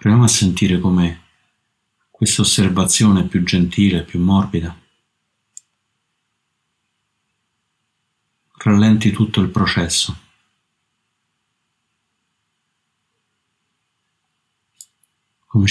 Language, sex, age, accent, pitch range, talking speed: Italian, male, 50-69, native, 95-110 Hz, 55 wpm